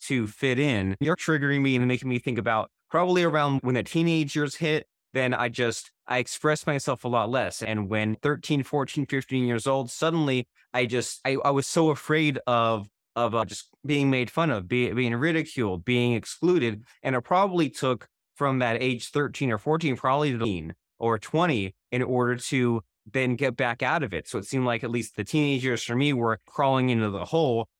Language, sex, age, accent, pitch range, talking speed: English, male, 20-39, American, 120-150 Hz, 205 wpm